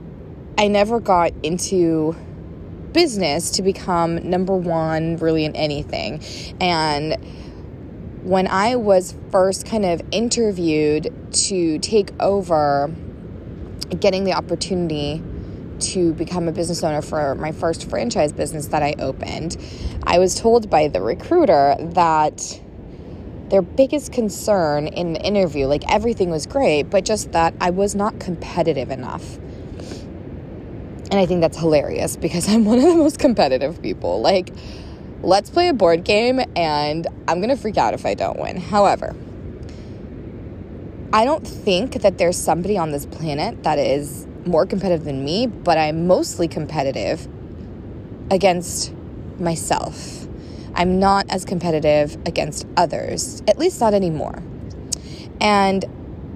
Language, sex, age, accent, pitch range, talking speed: English, female, 20-39, American, 155-205 Hz, 135 wpm